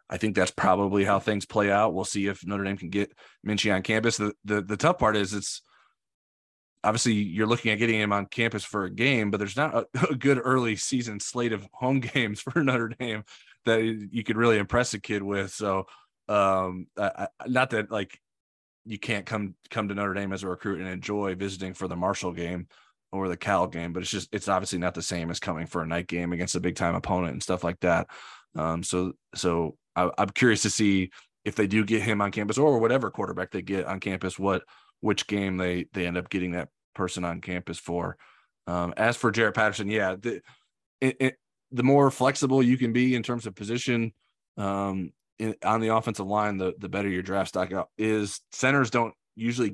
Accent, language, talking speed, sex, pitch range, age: American, English, 215 wpm, male, 95-110 Hz, 20-39